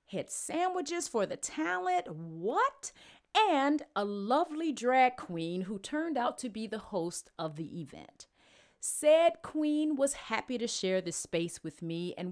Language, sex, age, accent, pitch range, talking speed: Ukrainian, female, 40-59, American, 165-255 Hz, 155 wpm